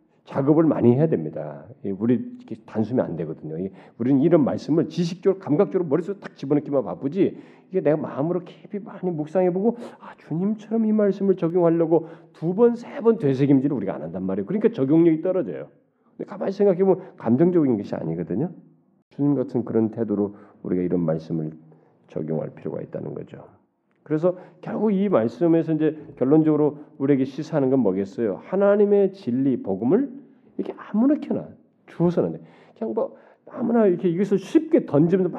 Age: 40-59